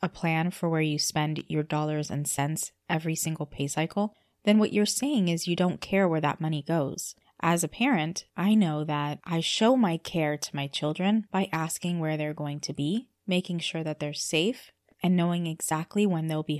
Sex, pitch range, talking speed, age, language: female, 155-200 Hz, 205 wpm, 20-39, English